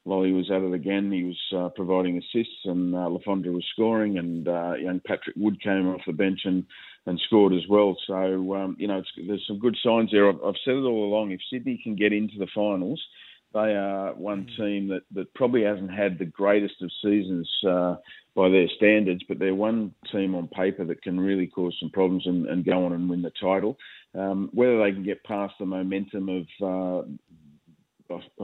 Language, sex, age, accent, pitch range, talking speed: English, male, 40-59, Australian, 90-100 Hz, 210 wpm